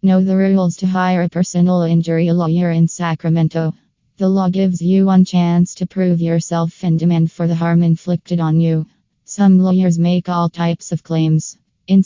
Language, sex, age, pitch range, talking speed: English, female, 20-39, 165-180 Hz, 180 wpm